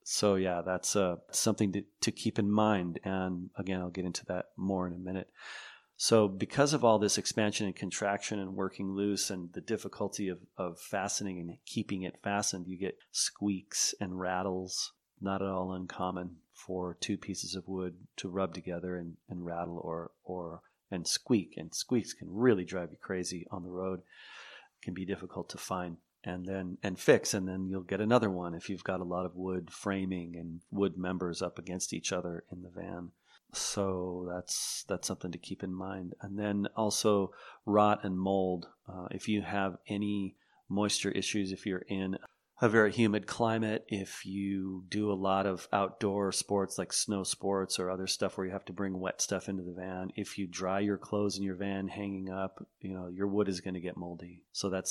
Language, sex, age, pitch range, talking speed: English, male, 40-59, 90-100 Hz, 200 wpm